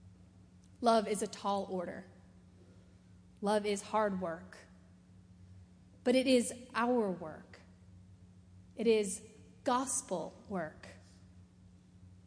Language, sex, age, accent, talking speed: English, female, 30-49, American, 90 wpm